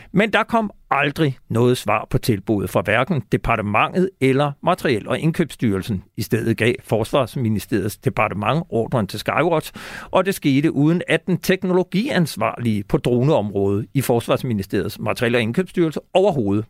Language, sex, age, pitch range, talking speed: Danish, male, 60-79, 115-155 Hz, 135 wpm